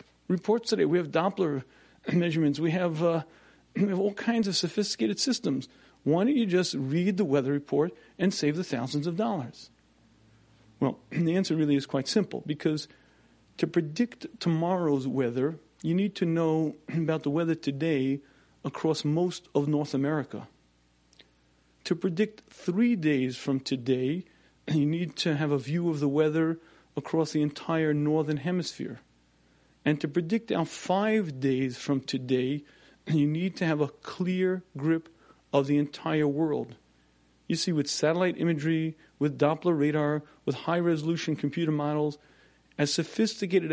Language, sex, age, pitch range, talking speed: English, male, 40-59, 140-170 Hz, 145 wpm